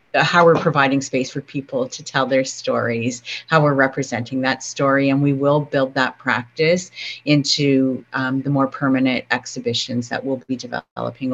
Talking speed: 170 wpm